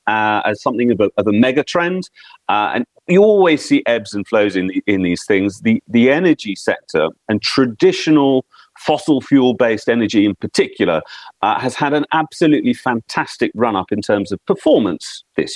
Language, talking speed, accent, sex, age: English, 175 wpm, British, male, 40-59